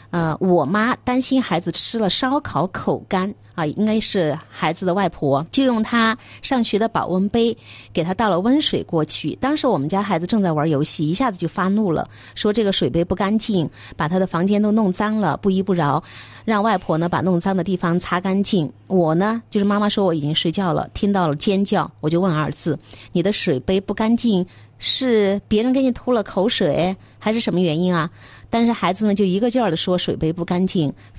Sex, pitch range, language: female, 170-220 Hz, Chinese